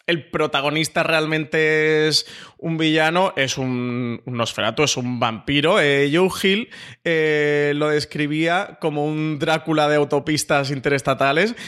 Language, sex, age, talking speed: Spanish, male, 20-39, 125 wpm